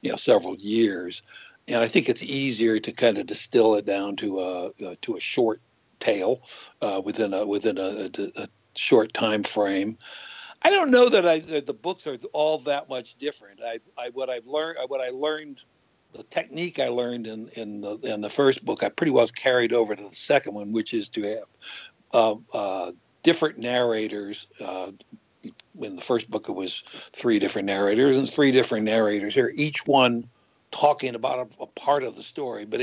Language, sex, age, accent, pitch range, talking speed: English, male, 60-79, American, 110-140 Hz, 195 wpm